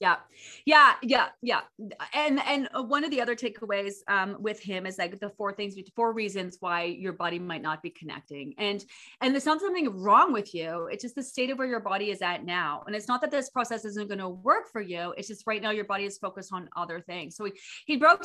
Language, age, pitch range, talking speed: English, 30-49, 195-255 Hz, 240 wpm